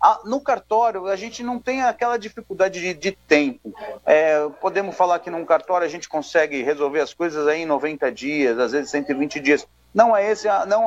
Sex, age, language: male, 40-59, Portuguese